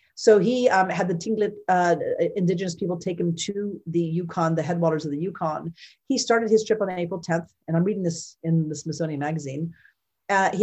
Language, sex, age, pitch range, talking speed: English, female, 50-69, 160-200 Hz, 205 wpm